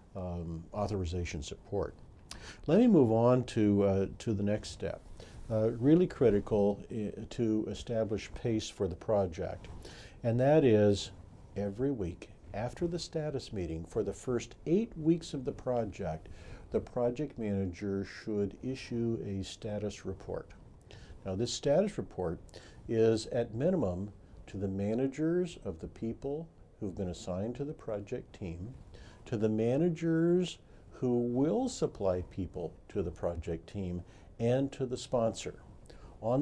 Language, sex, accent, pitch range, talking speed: English, male, American, 95-130 Hz, 135 wpm